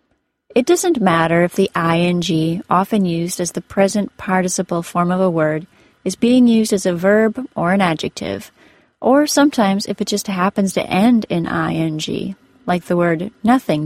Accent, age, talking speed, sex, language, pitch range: American, 30-49, 170 wpm, female, English, 175-235 Hz